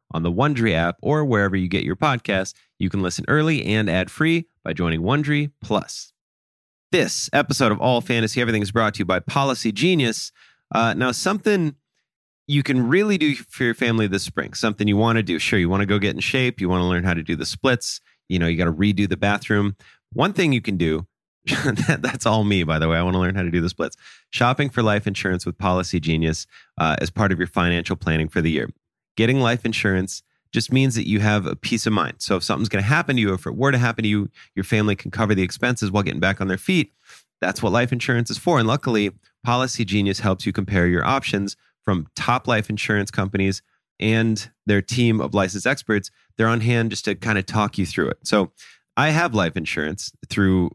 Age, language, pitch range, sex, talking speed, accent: 30-49, English, 95-120 Hz, male, 230 wpm, American